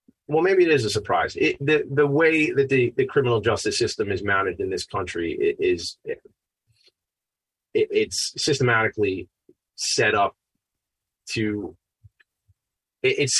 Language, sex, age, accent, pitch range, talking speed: English, male, 30-49, American, 110-145 Hz, 120 wpm